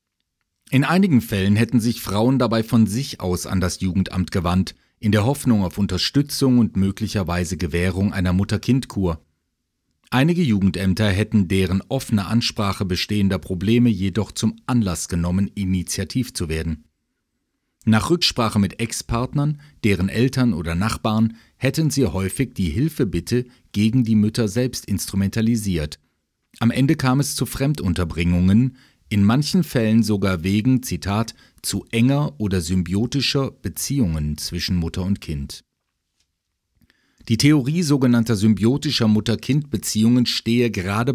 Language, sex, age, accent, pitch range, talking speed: German, male, 40-59, German, 90-120 Hz, 125 wpm